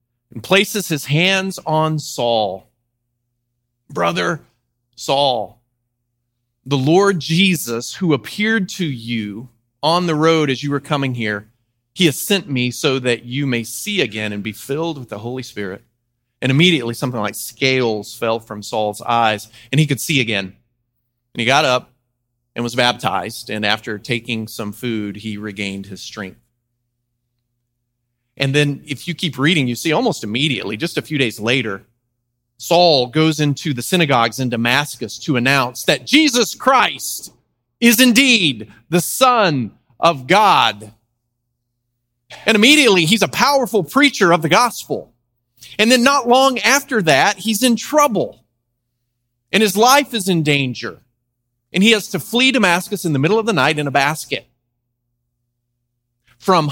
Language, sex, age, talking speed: English, male, 30-49, 150 wpm